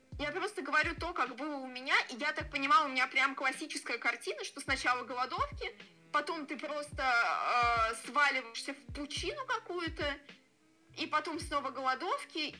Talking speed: 150 wpm